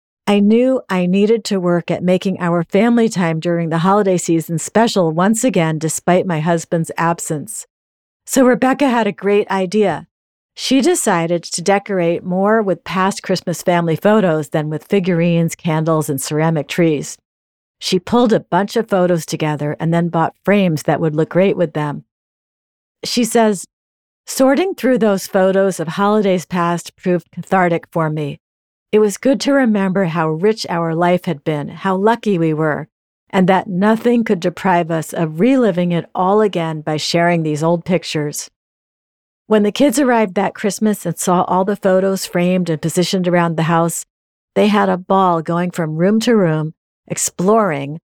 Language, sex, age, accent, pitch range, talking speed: English, female, 50-69, American, 165-205 Hz, 165 wpm